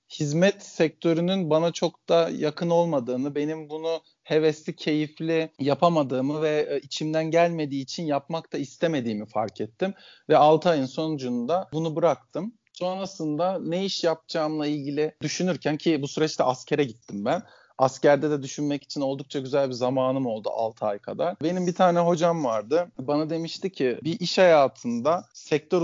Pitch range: 140-175 Hz